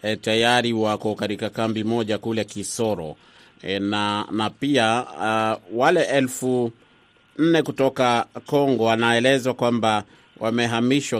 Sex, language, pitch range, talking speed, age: male, Swahili, 110-125 Hz, 115 wpm, 30-49